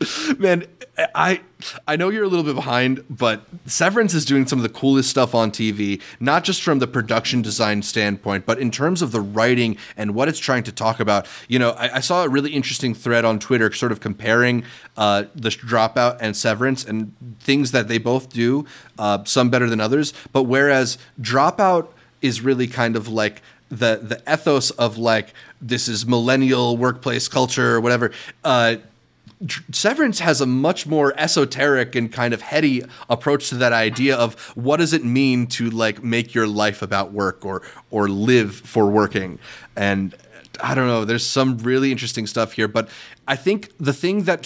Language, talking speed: English, 185 wpm